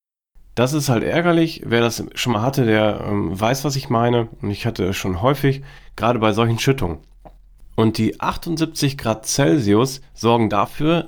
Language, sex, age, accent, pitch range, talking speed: German, male, 40-59, German, 105-135 Hz, 170 wpm